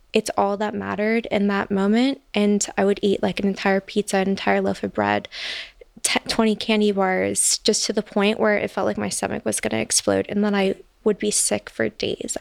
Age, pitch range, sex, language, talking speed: 20-39, 200-225 Hz, female, English, 220 wpm